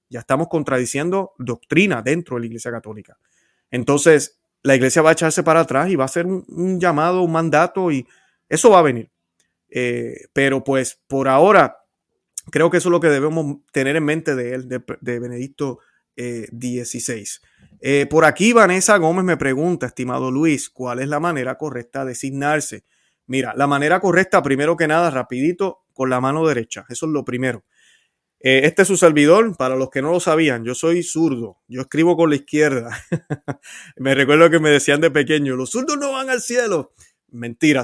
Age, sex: 30-49, male